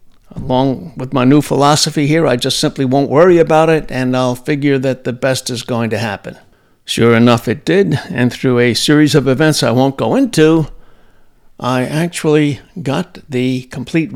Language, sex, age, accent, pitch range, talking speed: English, male, 60-79, American, 125-150 Hz, 180 wpm